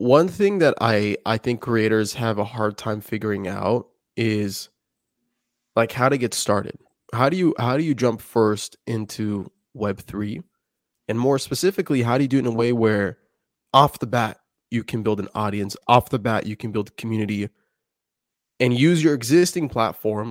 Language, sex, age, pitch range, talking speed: English, male, 20-39, 105-135 Hz, 175 wpm